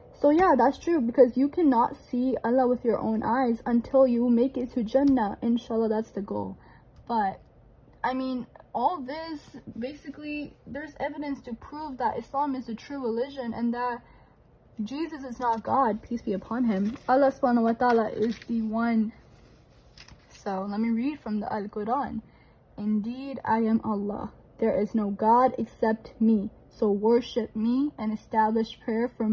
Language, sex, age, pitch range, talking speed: English, female, 10-29, 215-265 Hz, 165 wpm